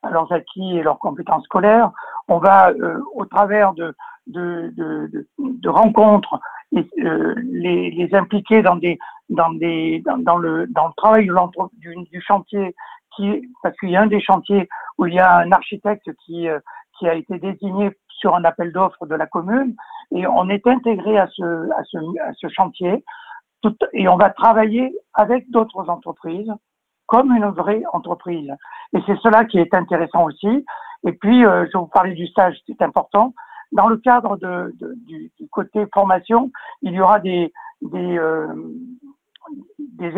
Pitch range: 175-225 Hz